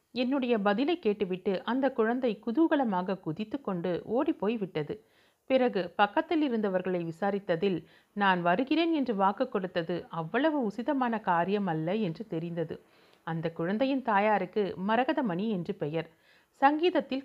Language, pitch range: Tamil, 180-250 Hz